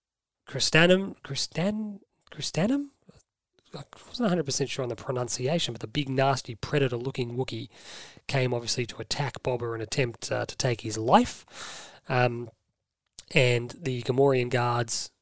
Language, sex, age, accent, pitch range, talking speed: English, male, 30-49, Australian, 120-150 Hz, 135 wpm